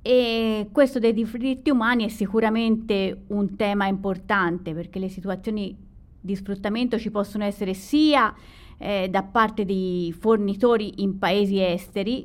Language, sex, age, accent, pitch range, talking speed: Italian, female, 30-49, native, 190-225 Hz, 130 wpm